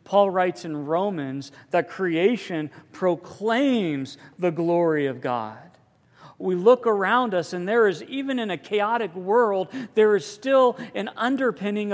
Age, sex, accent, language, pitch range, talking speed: 50-69, male, American, English, 150-205 Hz, 140 wpm